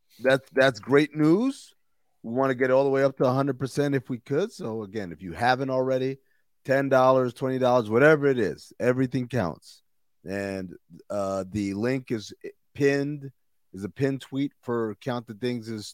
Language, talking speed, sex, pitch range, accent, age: English, 165 wpm, male, 100-130 Hz, American, 30-49